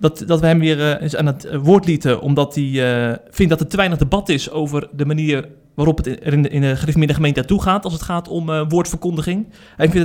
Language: Dutch